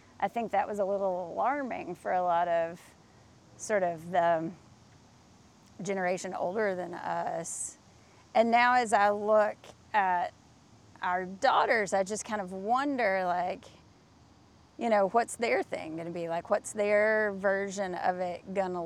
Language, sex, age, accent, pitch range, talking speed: English, female, 30-49, American, 170-205 Hz, 145 wpm